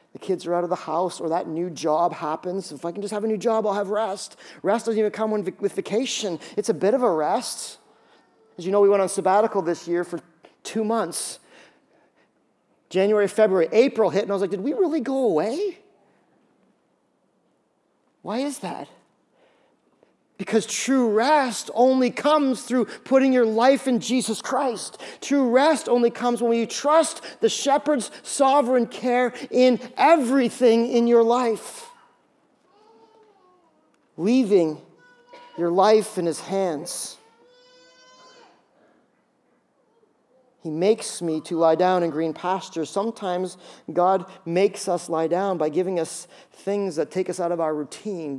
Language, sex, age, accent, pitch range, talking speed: English, male, 40-59, American, 180-260 Hz, 155 wpm